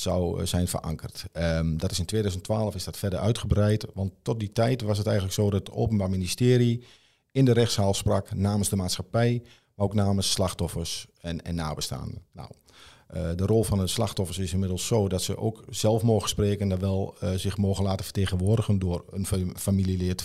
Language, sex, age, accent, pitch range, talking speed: Dutch, male, 50-69, Dutch, 90-105 Hz, 195 wpm